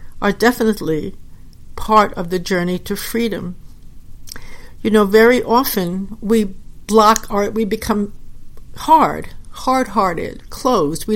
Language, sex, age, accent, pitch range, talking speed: English, female, 60-79, American, 175-220 Hz, 115 wpm